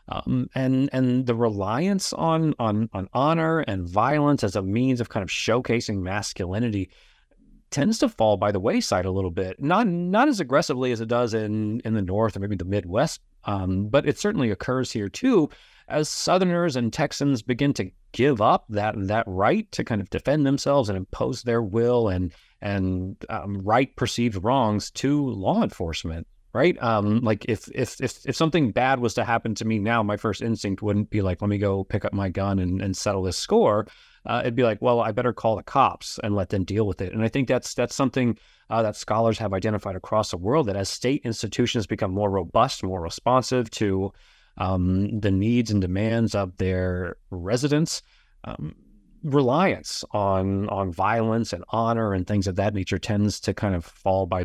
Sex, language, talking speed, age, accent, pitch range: male, English, 195 wpm, 30-49, American, 100-125 Hz